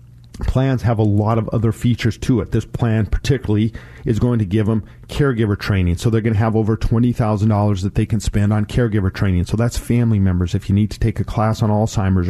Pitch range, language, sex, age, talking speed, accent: 100-120 Hz, English, male, 40-59, 225 wpm, American